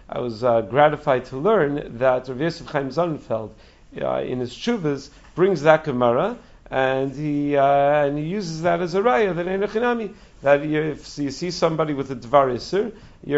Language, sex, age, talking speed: English, male, 40-59, 165 wpm